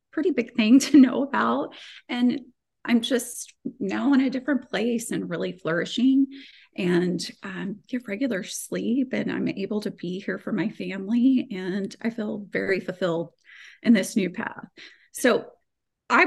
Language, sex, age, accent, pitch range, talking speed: English, female, 30-49, American, 195-245 Hz, 155 wpm